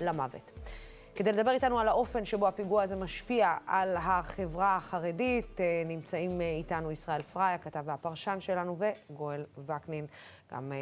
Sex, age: female, 20-39